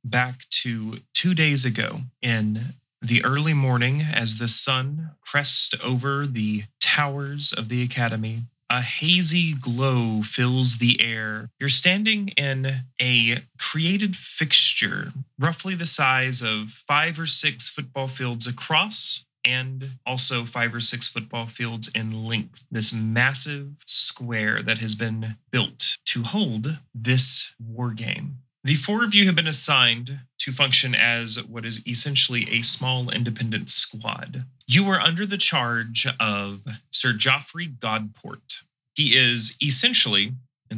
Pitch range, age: 115-145 Hz, 30-49